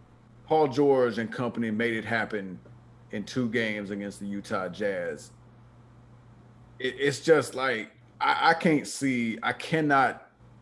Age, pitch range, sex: 30-49, 115-140 Hz, male